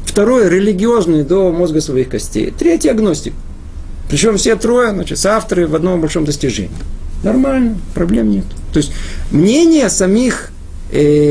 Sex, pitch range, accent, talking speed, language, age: male, 115-195 Hz, native, 140 wpm, Russian, 40-59